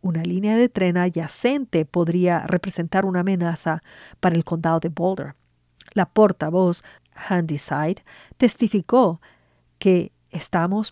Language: English